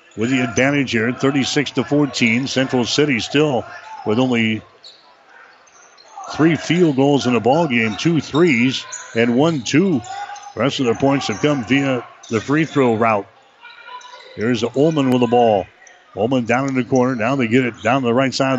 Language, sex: English, male